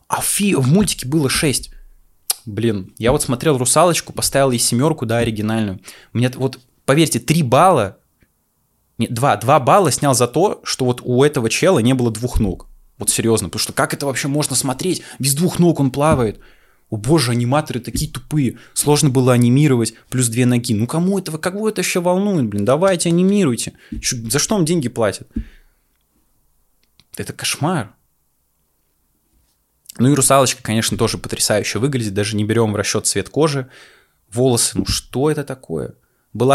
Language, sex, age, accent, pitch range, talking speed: Russian, male, 20-39, native, 115-150 Hz, 160 wpm